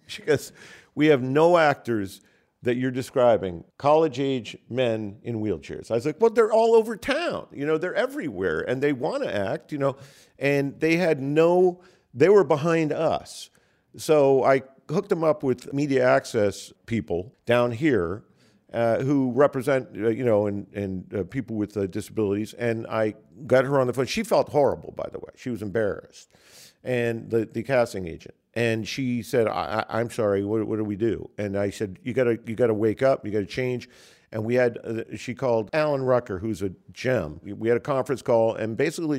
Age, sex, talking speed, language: 50-69, male, 200 wpm, English